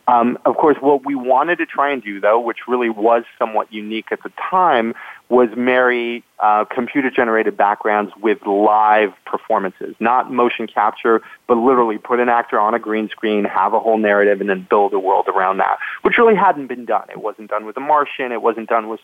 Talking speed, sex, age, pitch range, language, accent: 205 wpm, male, 30-49, 110-125 Hz, English, American